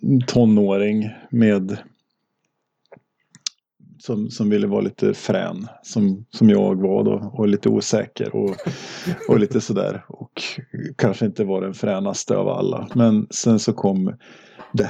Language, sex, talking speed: Swedish, male, 135 wpm